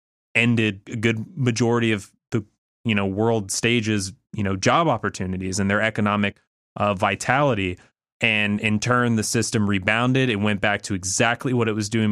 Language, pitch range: English, 100-120 Hz